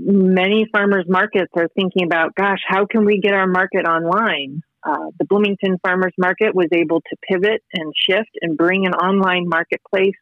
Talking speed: 175 wpm